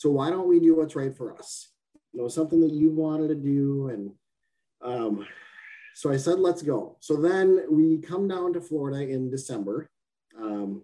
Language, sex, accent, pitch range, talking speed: English, male, American, 130-175 Hz, 190 wpm